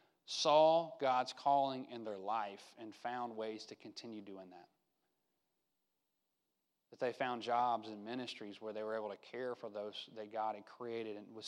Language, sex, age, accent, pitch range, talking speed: English, male, 30-49, American, 130-205 Hz, 165 wpm